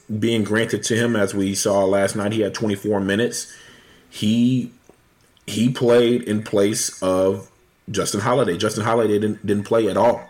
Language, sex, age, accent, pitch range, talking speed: English, male, 30-49, American, 95-115 Hz, 165 wpm